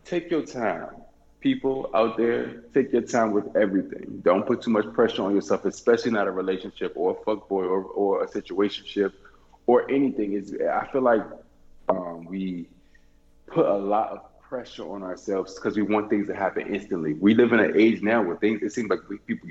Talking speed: 195 wpm